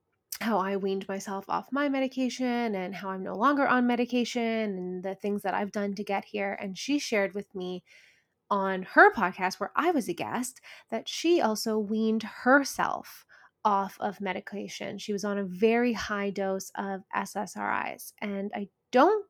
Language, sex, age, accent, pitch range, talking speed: English, female, 20-39, American, 200-255 Hz, 175 wpm